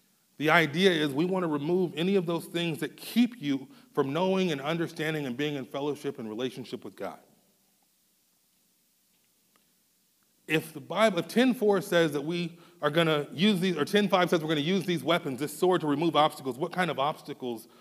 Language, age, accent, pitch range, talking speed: English, 30-49, American, 145-185 Hz, 190 wpm